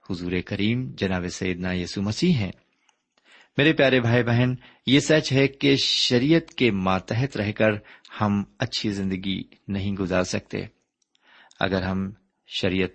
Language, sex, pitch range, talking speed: Urdu, male, 95-130 Hz, 130 wpm